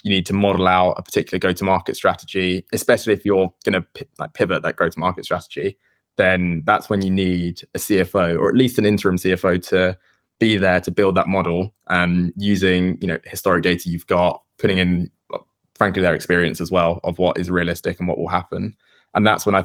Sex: male